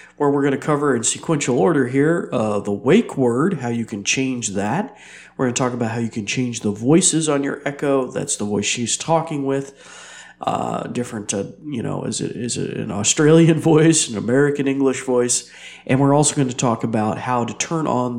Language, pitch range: English, 115-145 Hz